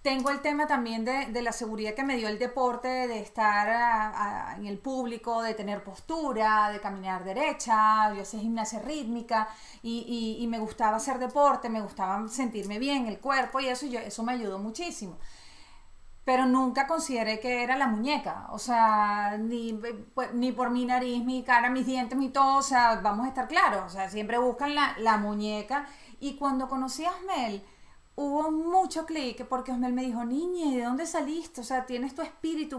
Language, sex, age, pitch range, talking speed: Spanish, female, 30-49, 230-280 Hz, 185 wpm